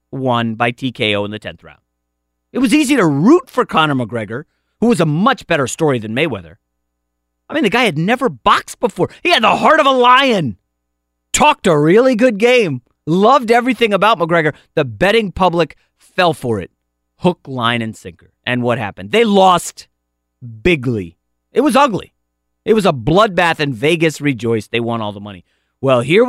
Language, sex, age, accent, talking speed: English, male, 30-49, American, 185 wpm